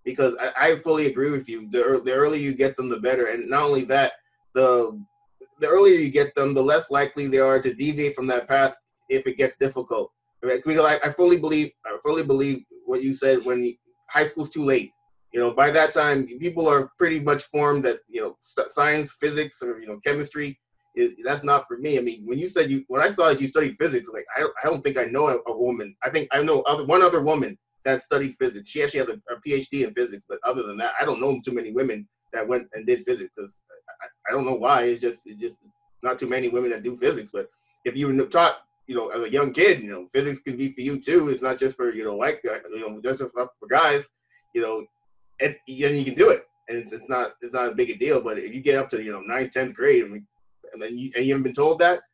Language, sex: English, male